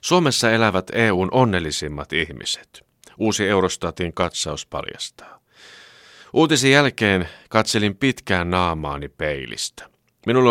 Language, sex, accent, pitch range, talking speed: Finnish, male, native, 85-115 Hz, 90 wpm